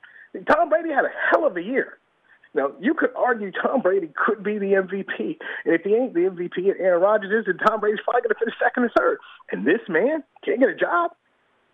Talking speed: 230 wpm